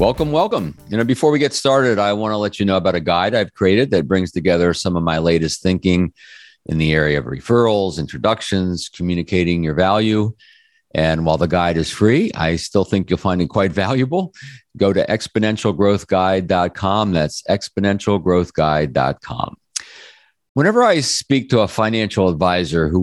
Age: 50-69